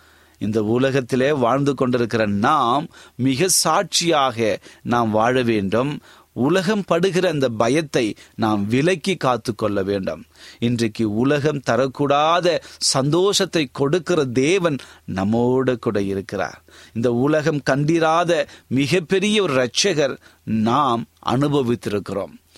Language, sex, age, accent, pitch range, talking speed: Tamil, male, 30-49, native, 110-155 Hz, 95 wpm